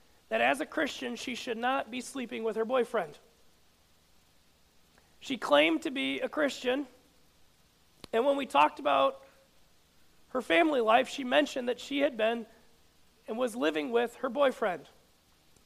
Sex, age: male, 40-59